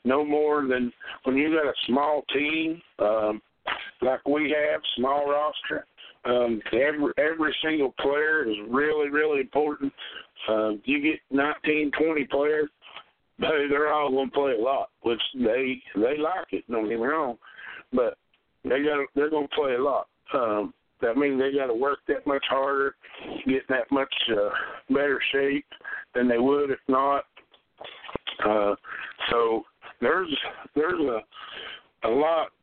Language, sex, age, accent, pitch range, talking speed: English, male, 50-69, American, 120-145 Hz, 150 wpm